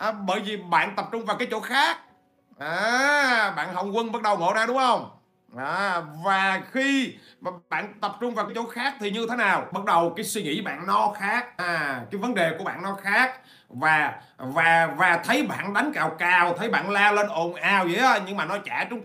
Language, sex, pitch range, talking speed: Vietnamese, male, 155-215 Hz, 235 wpm